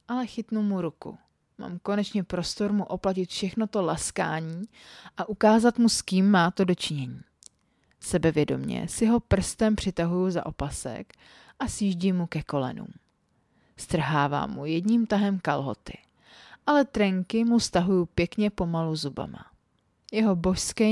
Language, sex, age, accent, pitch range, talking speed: Czech, female, 30-49, native, 165-210 Hz, 130 wpm